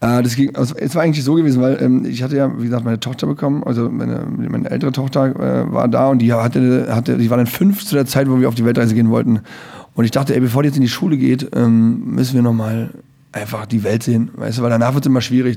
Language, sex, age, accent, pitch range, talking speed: German, male, 30-49, German, 115-135 Hz, 250 wpm